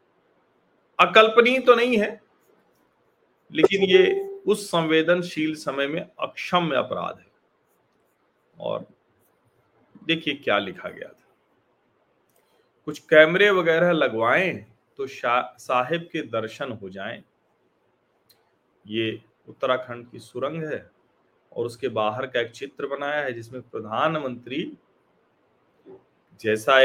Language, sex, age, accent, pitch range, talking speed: Hindi, male, 40-59, native, 120-160 Hz, 100 wpm